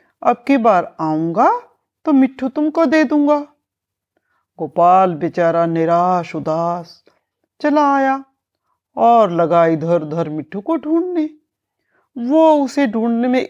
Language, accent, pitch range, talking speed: Hindi, native, 170-280 Hz, 115 wpm